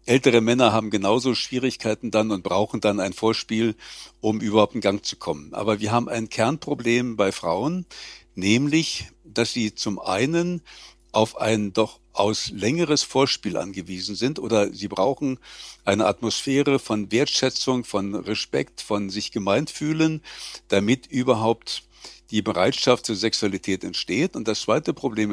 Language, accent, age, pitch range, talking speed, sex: German, German, 60-79, 105-140 Hz, 145 wpm, male